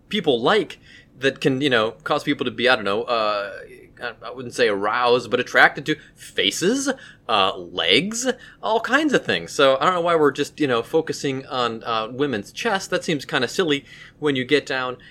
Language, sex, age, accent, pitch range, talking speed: English, male, 30-49, American, 135-200 Hz, 205 wpm